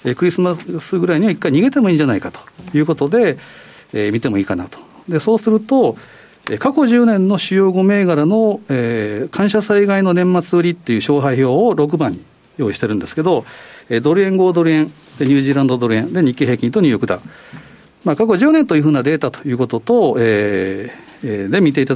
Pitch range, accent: 125-195 Hz, native